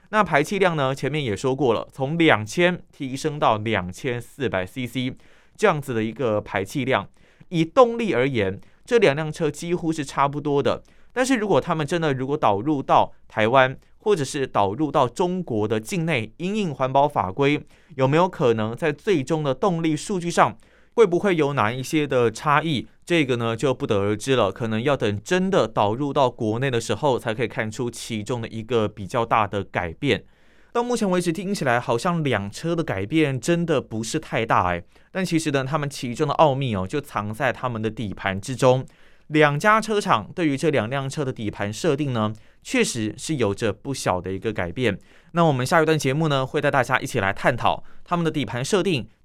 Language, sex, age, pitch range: Chinese, male, 20-39, 115-160 Hz